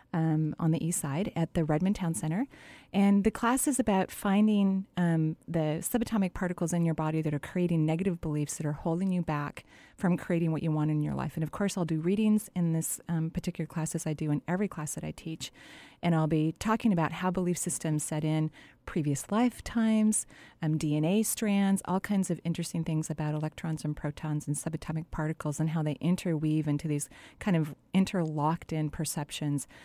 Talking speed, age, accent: 195 wpm, 30-49, American